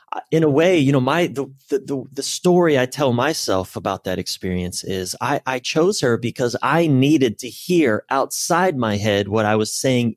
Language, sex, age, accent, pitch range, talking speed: English, male, 30-49, American, 105-140 Hz, 195 wpm